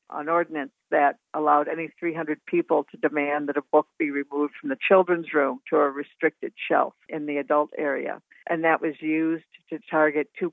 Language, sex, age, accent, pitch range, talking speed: English, female, 60-79, American, 145-165 Hz, 190 wpm